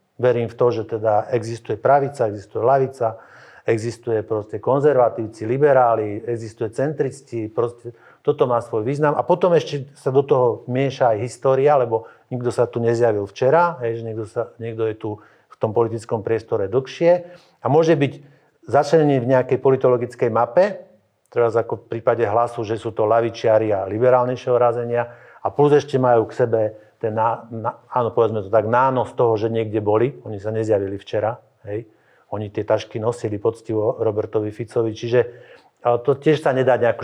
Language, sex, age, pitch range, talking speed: Slovak, male, 50-69, 110-135 Hz, 160 wpm